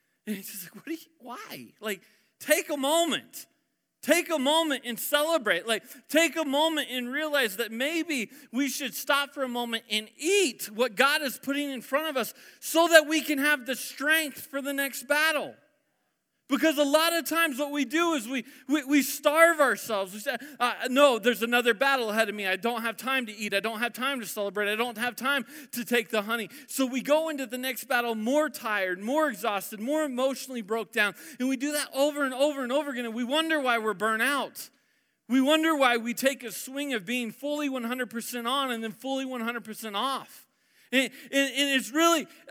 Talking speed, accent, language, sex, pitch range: 210 wpm, American, English, male, 235-290 Hz